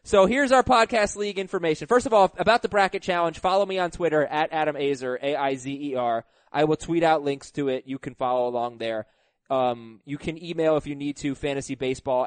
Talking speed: 205 wpm